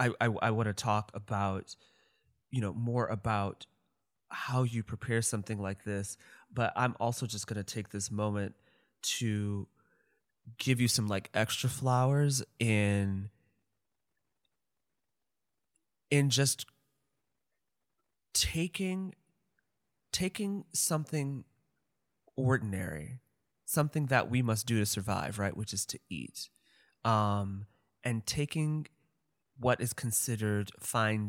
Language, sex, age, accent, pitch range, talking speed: English, male, 20-39, American, 105-125 Hz, 115 wpm